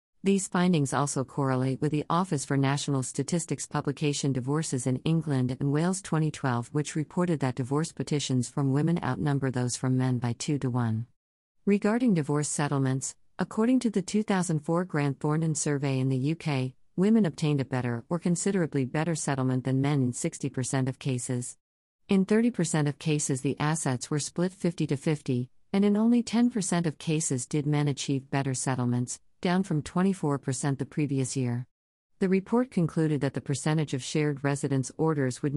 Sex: female